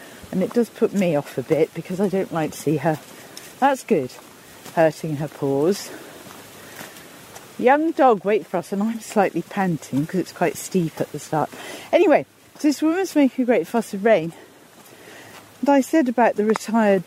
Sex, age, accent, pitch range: female, 40-59, British, 190-285 Hz